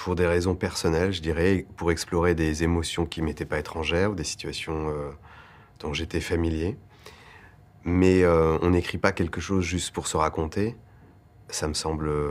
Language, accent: French, French